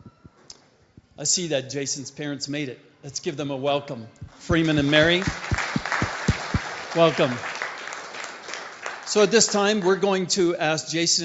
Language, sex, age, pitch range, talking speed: English, male, 40-59, 140-165 Hz, 135 wpm